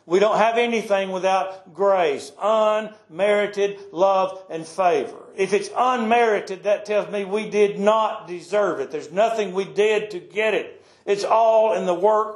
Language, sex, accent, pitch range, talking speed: English, male, American, 190-230 Hz, 160 wpm